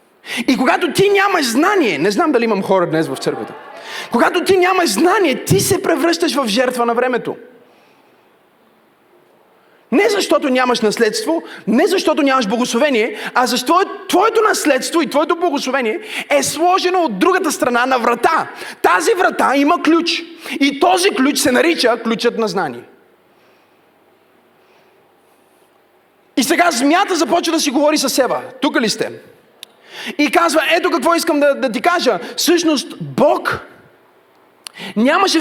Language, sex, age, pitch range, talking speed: Bulgarian, male, 30-49, 250-350 Hz, 140 wpm